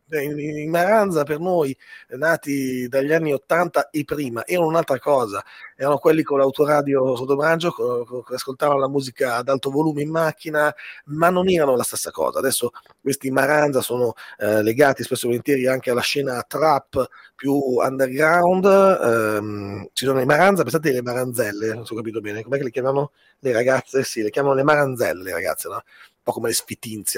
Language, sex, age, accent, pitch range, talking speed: Italian, male, 30-49, native, 125-165 Hz, 175 wpm